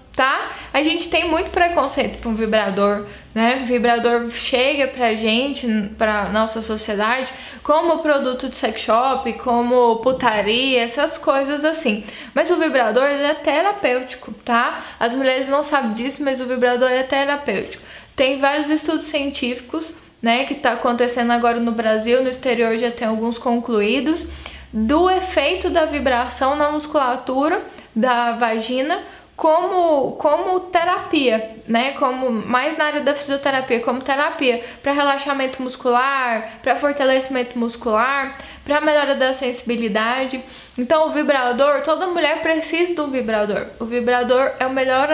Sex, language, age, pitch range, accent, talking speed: female, Portuguese, 10-29, 240-300 Hz, Brazilian, 140 wpm